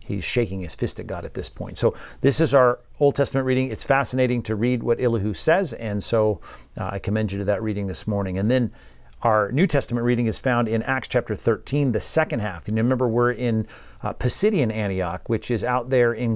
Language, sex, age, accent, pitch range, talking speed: English, male, 40-59, American, 110-130 Hz, 225 wpm